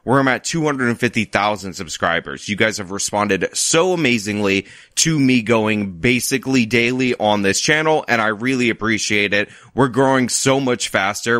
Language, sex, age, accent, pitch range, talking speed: English, male, 30-49, American, 110-150 Hz, 155 wpm